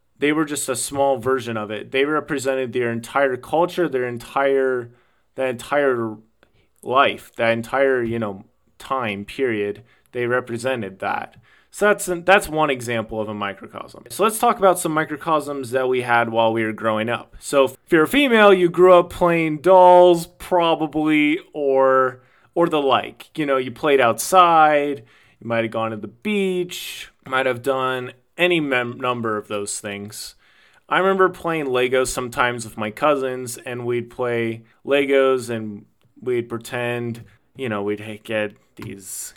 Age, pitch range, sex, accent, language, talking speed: 30-49, 115-145 Hz, male, American, English, 160 wpm